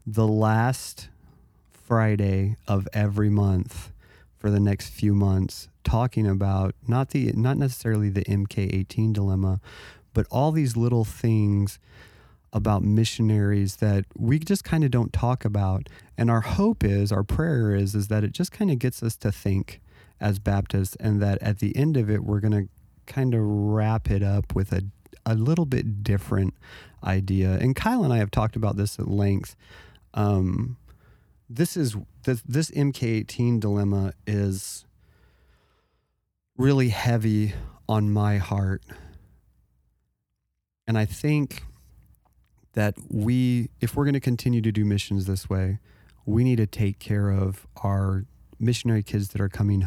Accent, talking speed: American, 150 wpm